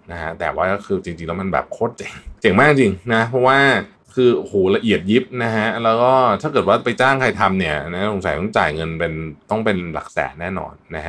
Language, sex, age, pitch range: Thai, male, 20-39, 85-115 Hz